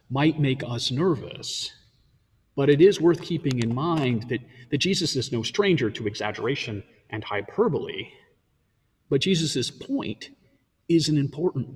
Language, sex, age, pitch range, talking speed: English, male, 40-59, 120-155 Hz, 140 wpm